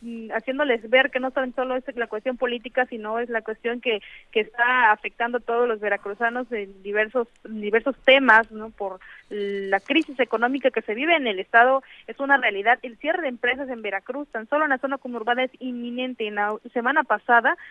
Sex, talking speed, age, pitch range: female, 195 wpm, 30-49, 225-275 Hz